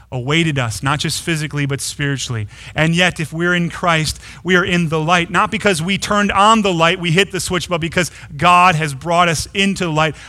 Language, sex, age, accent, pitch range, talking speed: English, male, 30-49, American, 135-180 Hz, 215 wpm